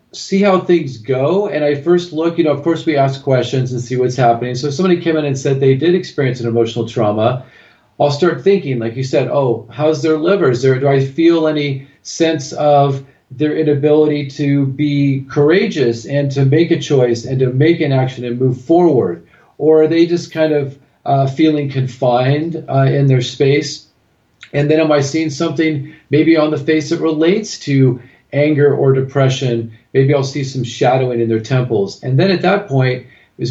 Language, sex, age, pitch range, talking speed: English, male, 40-59, 130-160 Hz, 195 wpm